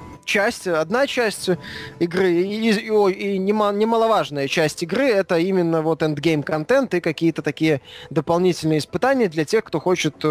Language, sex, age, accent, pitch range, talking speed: Russian, male, 20-39, native, 150-195 Hz, 140 wpm